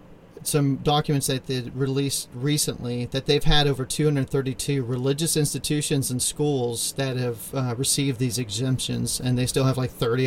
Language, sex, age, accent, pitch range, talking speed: English, male, 40-59, American, 125-145 Hz, 160 wpm